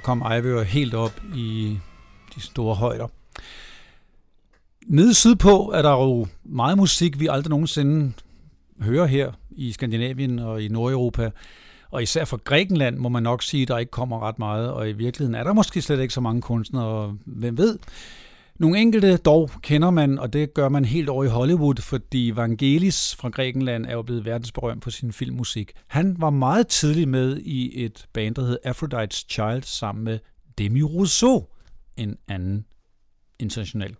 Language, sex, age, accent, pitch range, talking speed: Danish, male, 60-79, native, 110-150 Hz, 170 wpm